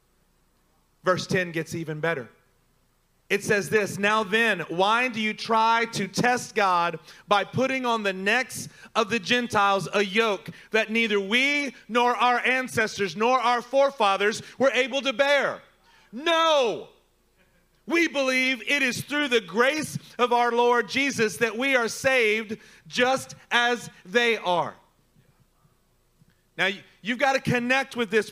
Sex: male